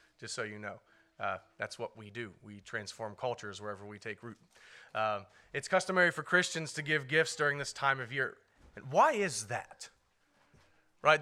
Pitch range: 130-165 Hz